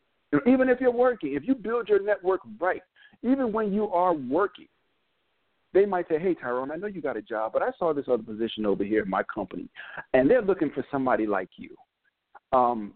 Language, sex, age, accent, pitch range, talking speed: English, male, 50-69, American, 125-180 Hz, 210 wpm